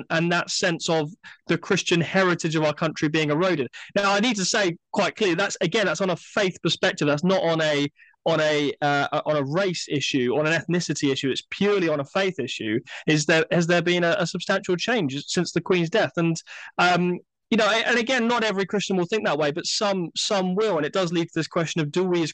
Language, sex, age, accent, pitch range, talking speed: English, male, 20-39, British, 150-195 Hz, 235 wpm